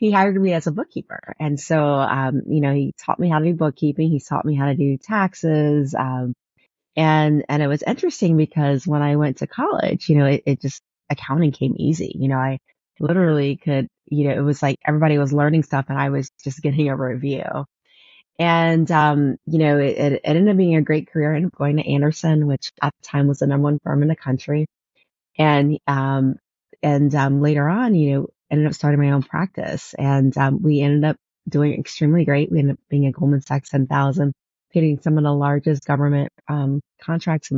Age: 30-49